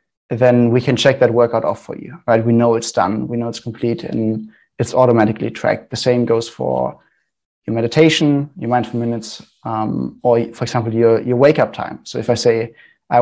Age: 20-39